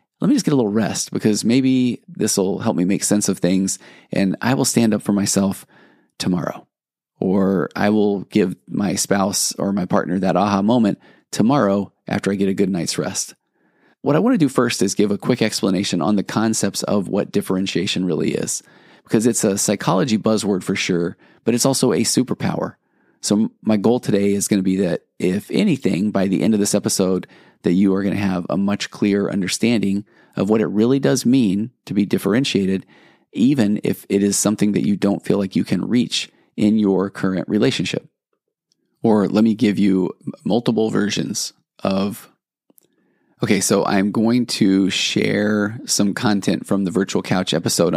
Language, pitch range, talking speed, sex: English, 95-110 Hz, 190 wpm, male